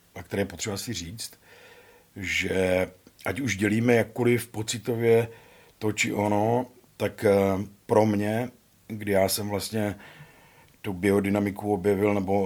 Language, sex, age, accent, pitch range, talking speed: Czech, male, 50-69, native, 90-110 Hz, 130 wpm